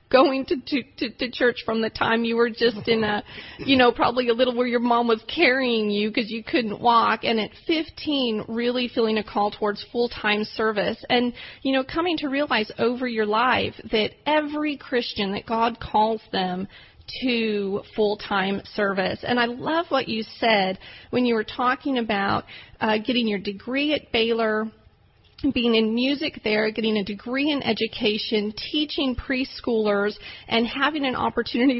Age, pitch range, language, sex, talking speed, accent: 30-49, 215-260 Hz, English, female, 170 wpm, American